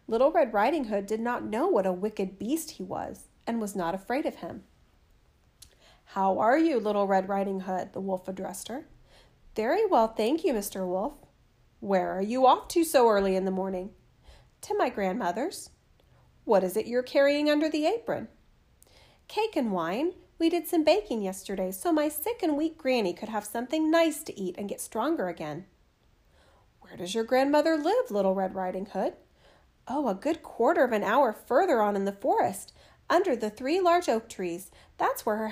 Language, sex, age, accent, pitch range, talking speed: English, female, 40-59, American, 190-295 Hz, 190 wpm